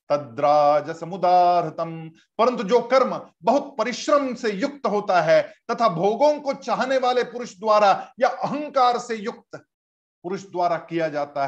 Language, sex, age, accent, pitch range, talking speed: Hindi, male, 50-69, native, 165-245 Hz, 140 wpm